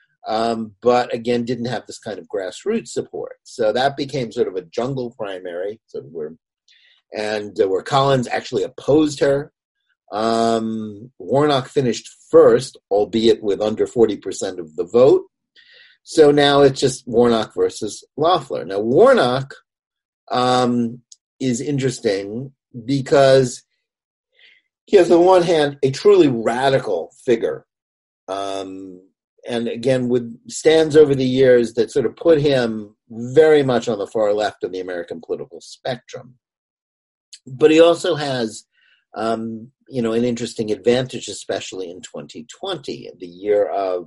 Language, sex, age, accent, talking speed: English, male, 40-59, American, 140 wpm